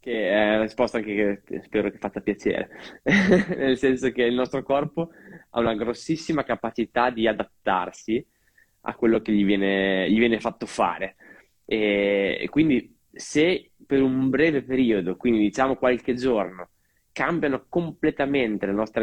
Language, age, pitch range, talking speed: Italian, 20-39, 105-135 Hz, 145 wpm